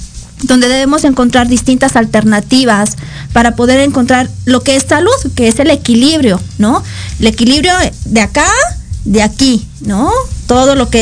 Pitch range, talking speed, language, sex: 225-275 Hz, 145 wpm, Spanish, female